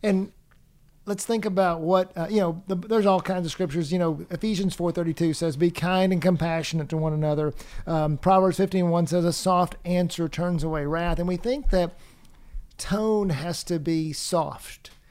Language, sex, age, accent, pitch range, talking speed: English, male, 50-69, American, 155-185 Hz, 180 wpm